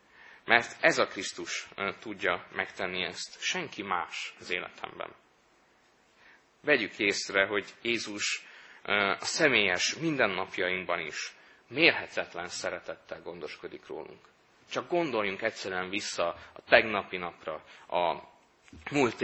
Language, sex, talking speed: Hungarian, male, 100 wpm